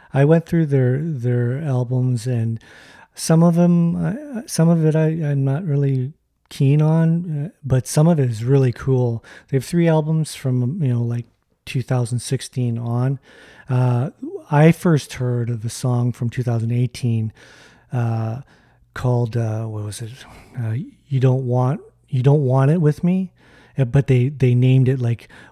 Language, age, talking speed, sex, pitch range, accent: English, 40-59, 160 wpm, male, 120-145 Hz, American